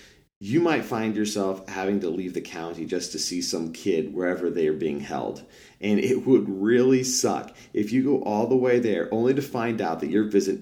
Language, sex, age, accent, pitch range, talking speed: English, male, 40-59, American, 80-115 Hz, 215 wpm